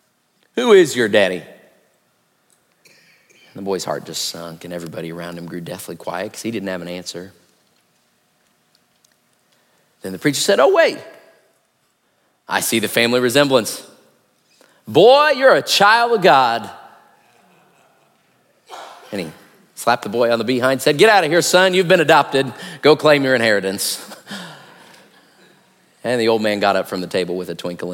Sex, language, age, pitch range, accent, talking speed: male, English, 40-59, 90-150 Hz, American, 160 wpm